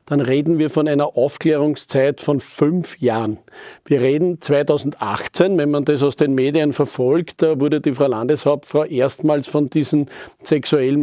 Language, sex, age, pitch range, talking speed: German, male, 40-59, 145-175 Hz, 150 wpm